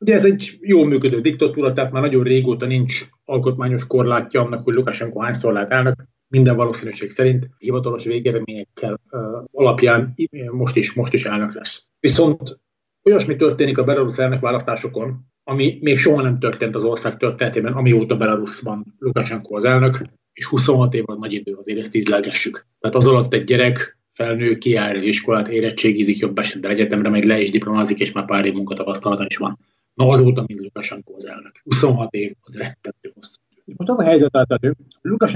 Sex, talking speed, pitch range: male, 170 wpm, 110-135 Hz